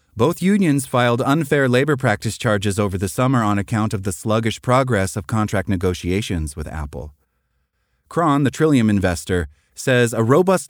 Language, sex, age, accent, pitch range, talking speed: English, male, 30-49, American, 90-145 Hz, 155 wpm